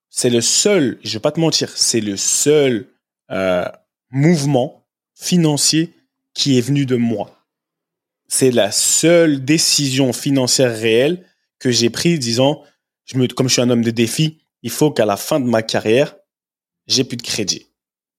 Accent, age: French, 20-39